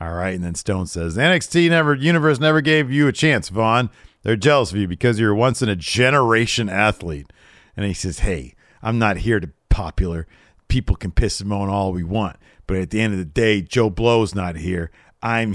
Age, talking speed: 40-59, 215 wpm